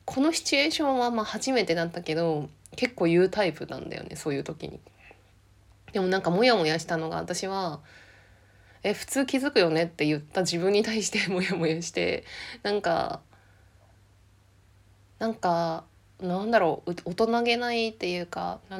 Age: 20-39